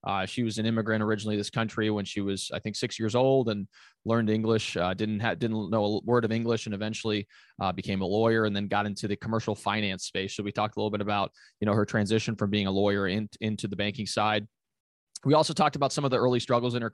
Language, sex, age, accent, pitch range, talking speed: English, male, 20-39, American, 105-125 Hz, 260 wpm